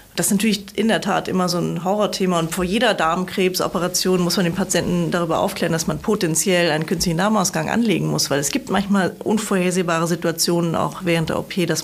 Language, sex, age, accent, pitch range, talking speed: German, female, 30-49, German, 180-210 Hz, 200 wpm